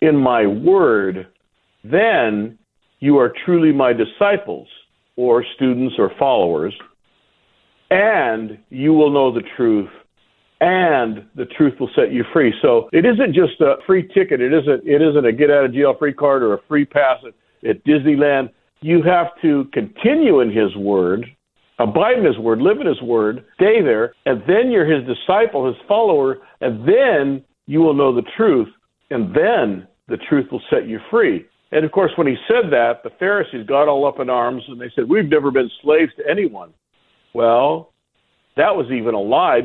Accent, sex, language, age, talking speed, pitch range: American, male, English, 60-79, 180 wpm, 125-170 Hz